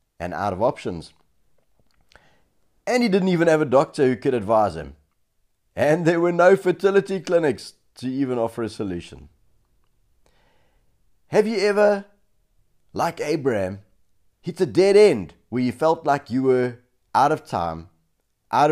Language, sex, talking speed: English, male, 145 wpm